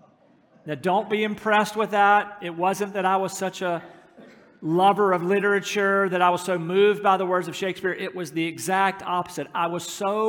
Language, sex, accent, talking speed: English, male, American, 200 wpm